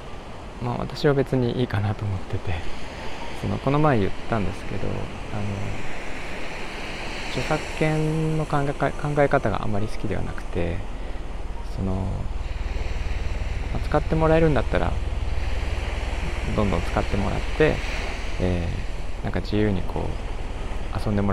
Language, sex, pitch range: Japanese, male, 90-110 Hz